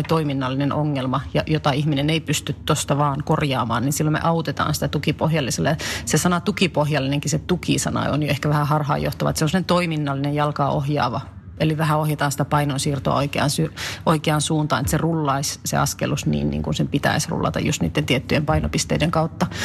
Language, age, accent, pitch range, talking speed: Finnish, 30-49, native, 145-165 Hz, 175 wpm